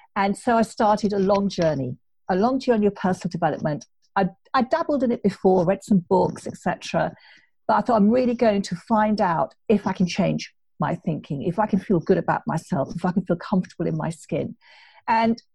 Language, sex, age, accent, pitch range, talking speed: English, female, 50-69, British, 185-225 Hz, 210 wpm